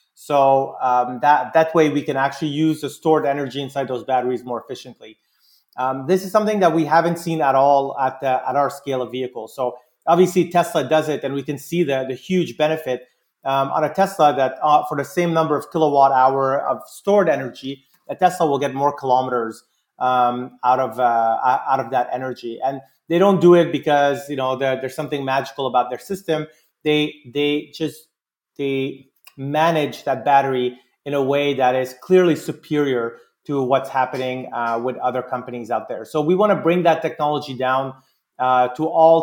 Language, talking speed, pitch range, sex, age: English, 195 wpm, 130-155 Hz, male, 30-49